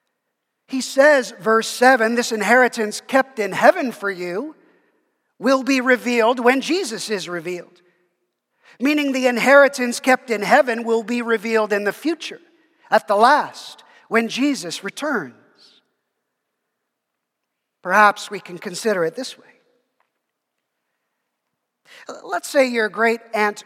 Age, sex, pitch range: 50-69, male, 200-260 Hz